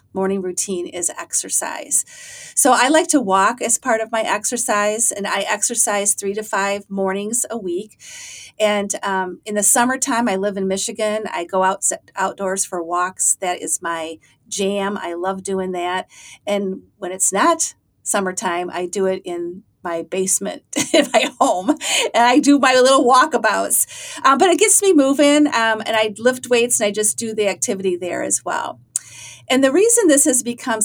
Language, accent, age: English, American, 40-59